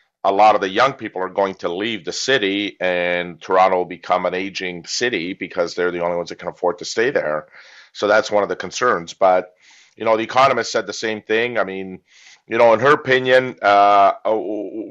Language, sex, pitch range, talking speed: English, male, 90-105 Hz, 215 wpm